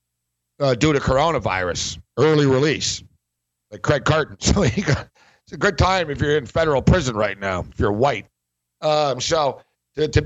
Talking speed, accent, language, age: 160 wpm, American, English, 60-79